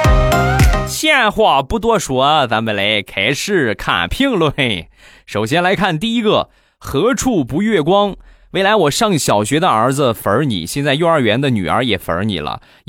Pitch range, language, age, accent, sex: 105-155 Hz, Chinese, 20-39, native, male